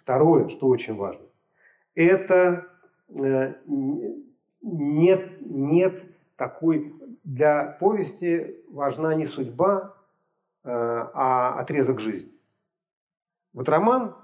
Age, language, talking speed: 40-59, Russian, 75 wpm